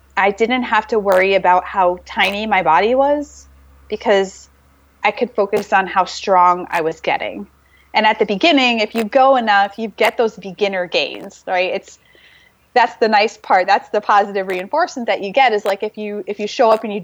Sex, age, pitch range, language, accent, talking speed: female, 20-39, 175-215 Hz, Finnish, American, 200 wpm